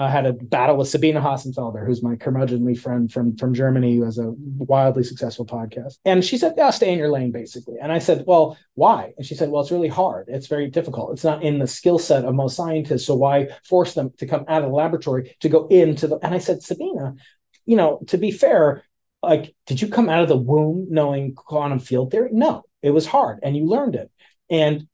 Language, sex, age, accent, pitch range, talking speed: English, male, 30-49, American, 135-180 Hz, 235 wpm